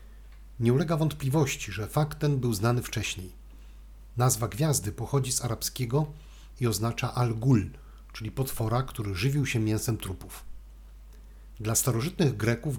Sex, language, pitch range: male, Polish, 100-135 Hz